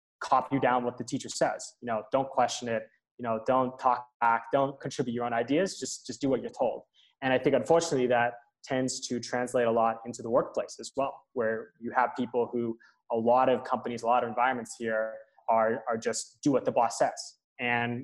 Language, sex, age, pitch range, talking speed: English, male, 20-39, 115-140 Hz, 215 wpm